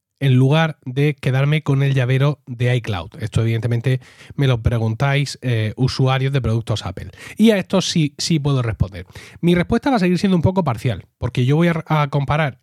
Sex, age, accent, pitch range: male, 30-49, Spanish, 125-165 Hz